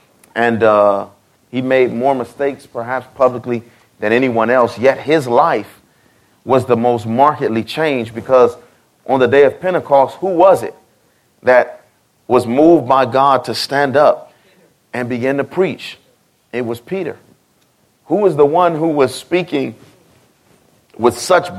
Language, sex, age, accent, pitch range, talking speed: English, male, 30-49, American, 110-135 Hz, 145 wpm